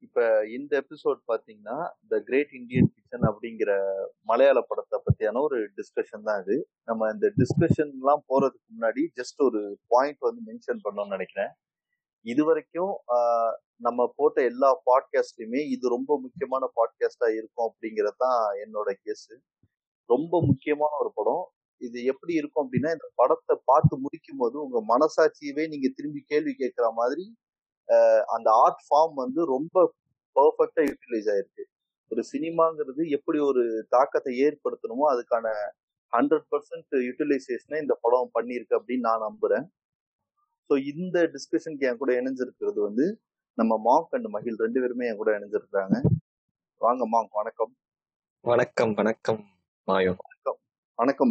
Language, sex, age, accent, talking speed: Tamil, male, 30-49, native, 95 wpm